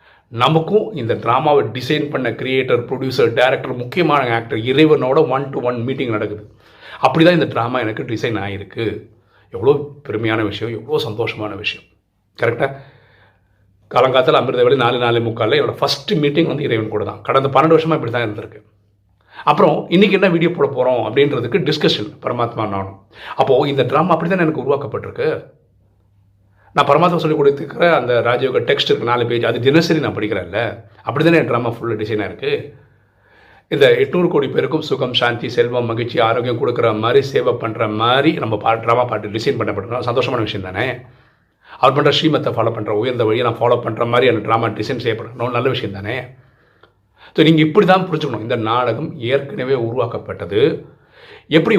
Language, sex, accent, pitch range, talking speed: Tamil, male, native, 110-155 Hz, 155 wpm